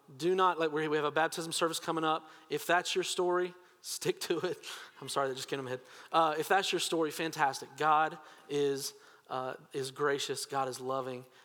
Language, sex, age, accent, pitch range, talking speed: English, male, 40-59, American, 135-165 Hz, 210 wpm